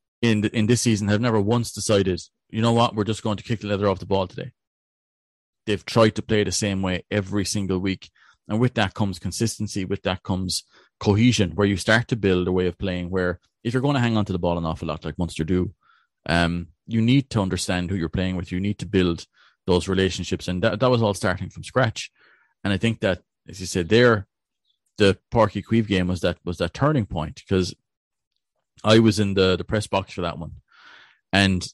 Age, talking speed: 30-49, 225 wpm